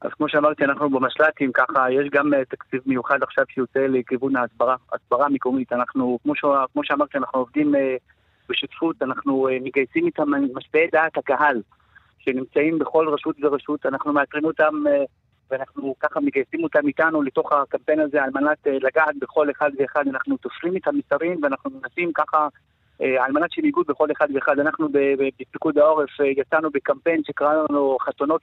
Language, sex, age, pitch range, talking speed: Hebrew, male, 30-49, 140-160 Hz, 160 wpm